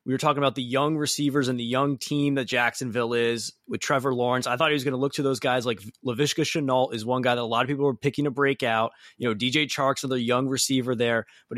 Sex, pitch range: male, 120-145 Hz